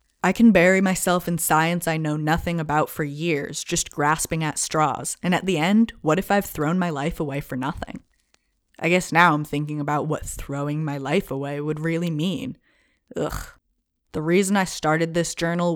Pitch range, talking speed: 145-180 Hz, 190 wpm